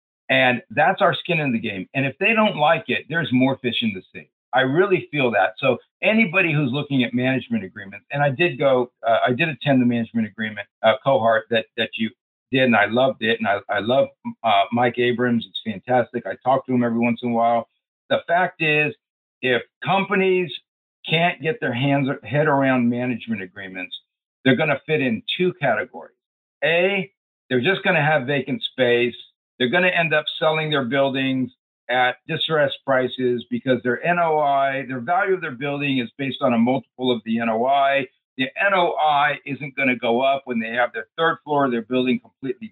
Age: 60-79